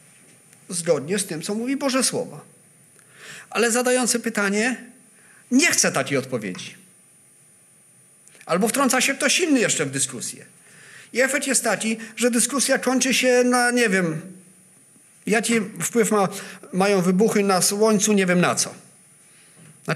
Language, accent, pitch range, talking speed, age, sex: Polish, native, 175-245 Hz, 130 wpm, 50-69, male